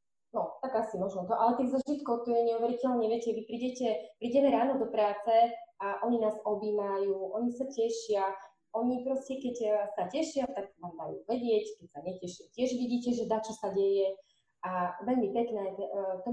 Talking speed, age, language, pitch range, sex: 175 wpm, 20-39, Slovak, 190-230 Hz, female